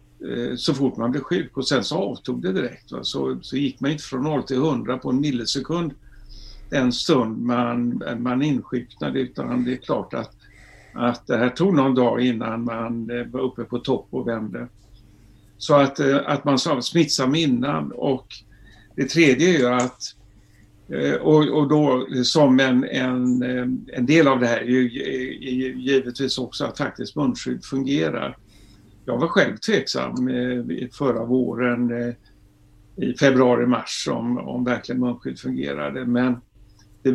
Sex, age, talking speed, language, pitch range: male, 60-79, 150 wpm, Swedish, 115-135 Hz